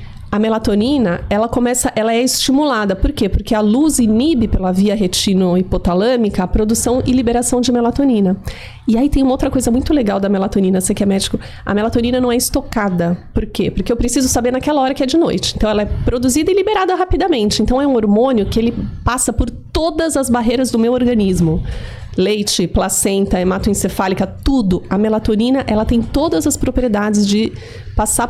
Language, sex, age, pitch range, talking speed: Portuguese, female, 30-49, 195-250 Hz, 180 wpm